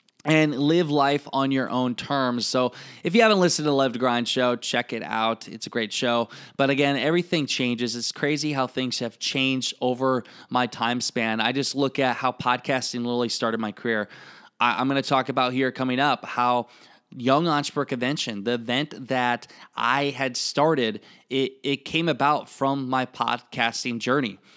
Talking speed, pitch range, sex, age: 185 wpm, 125-145 Hz, male, 20-39